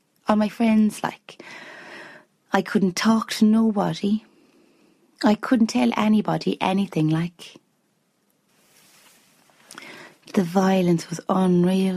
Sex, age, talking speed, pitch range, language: female, 30-49, 95 wpm, 175-225 Hz, English